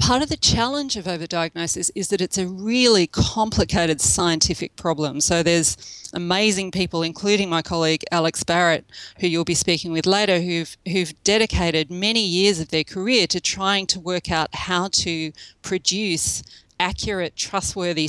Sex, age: female, 40-59